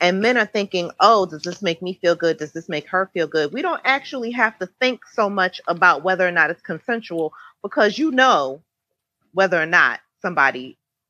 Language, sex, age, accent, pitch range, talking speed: English, female, 30-49, American, 160-220 Hz, 205 wpm